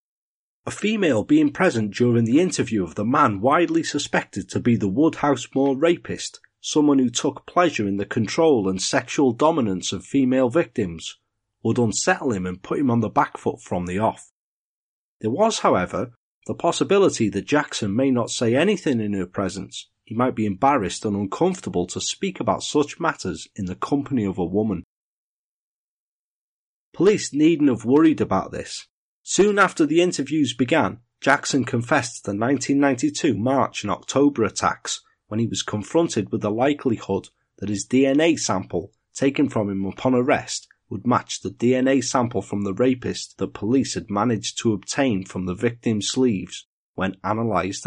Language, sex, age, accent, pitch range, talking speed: English, male, 40-59, British, 100-145 Hz, 165 wpm